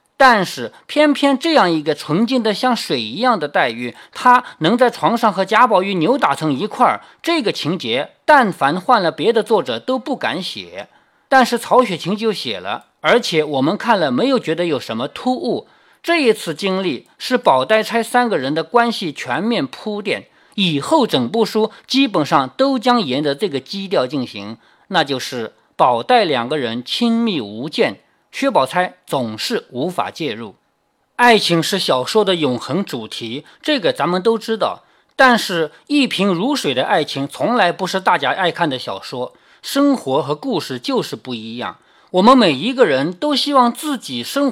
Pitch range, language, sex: 160-255 Hz, Chinese, male